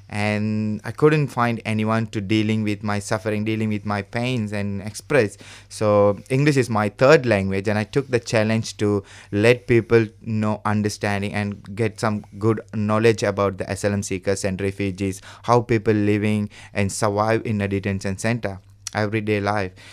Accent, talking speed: Indian, 165 wpm